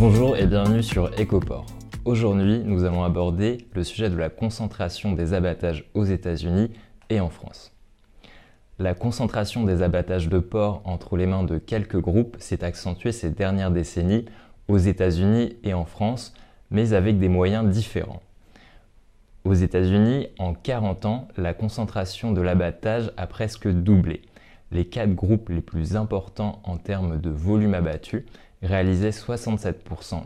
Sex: male